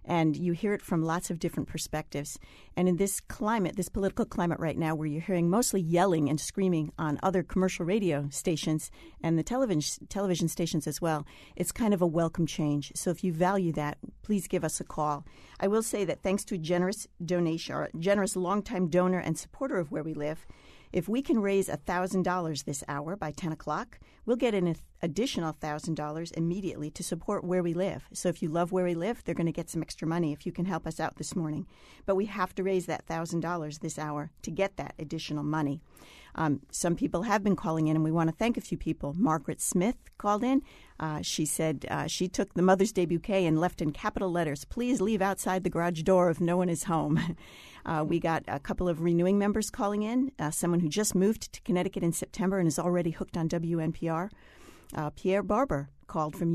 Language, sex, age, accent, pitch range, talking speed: English, female, 40-59, American, 160-195 Hz, 215 wpm